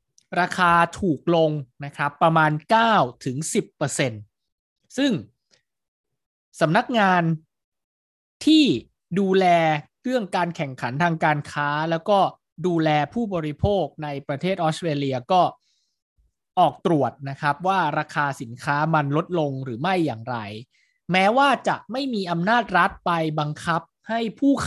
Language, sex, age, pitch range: Thai, male, 20-39, 145-190 Hz